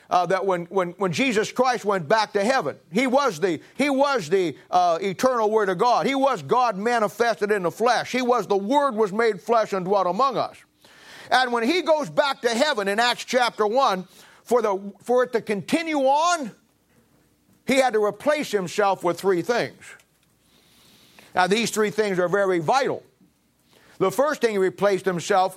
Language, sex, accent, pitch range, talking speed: English, male, American, 185-250 Hz, 185 wpm